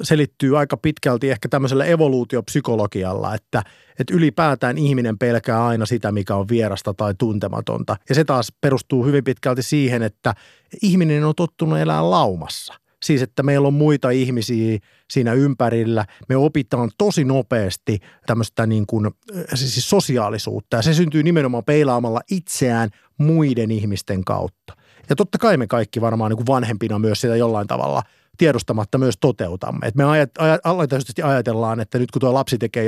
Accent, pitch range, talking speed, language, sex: native, 115-145 Hz, 155 wpm, Finnish, male